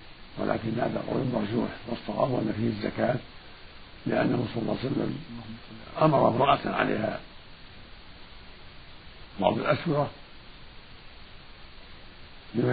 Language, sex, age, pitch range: Arabic, male, 60-79, 110-145 Hz